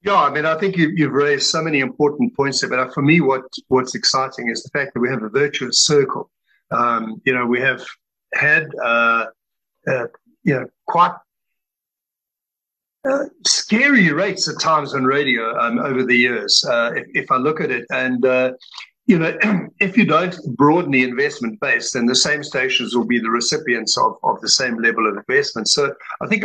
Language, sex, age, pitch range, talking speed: English, male, 50-69, 120-165 Hz, 195 wpm